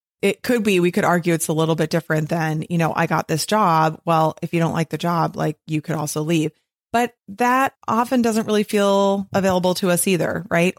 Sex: female